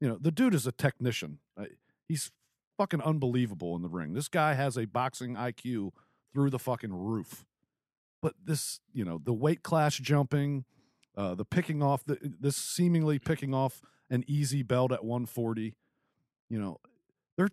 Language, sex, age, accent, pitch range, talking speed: English, male, 50-69, American, 125-155 Hz, 165 wpm